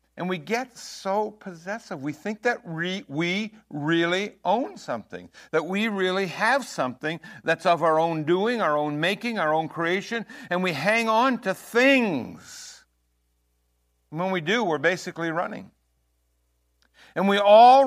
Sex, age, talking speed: male, 60-79, 150 wpm